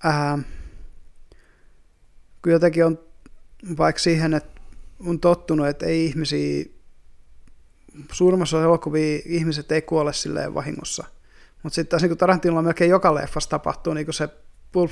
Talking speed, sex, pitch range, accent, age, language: 120 wpm, male, 145-170 Hz, native, 20-39, Finnish